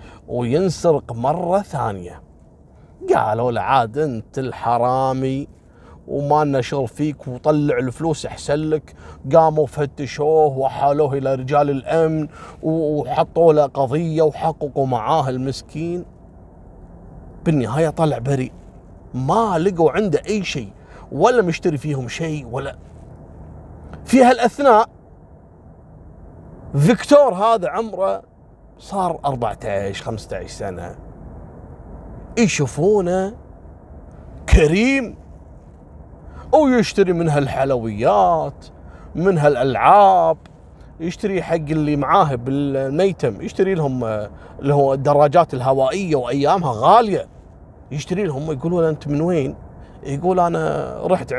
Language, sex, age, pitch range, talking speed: Arabic, male, 30-49, 115-165 Hz, 90 wpm